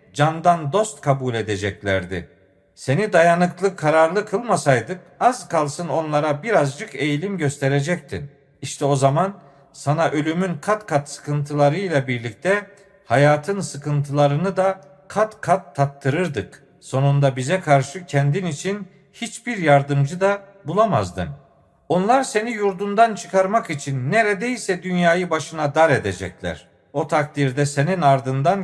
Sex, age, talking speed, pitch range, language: male, 50-69, 110 wpm, 140-185 Hz, Turkish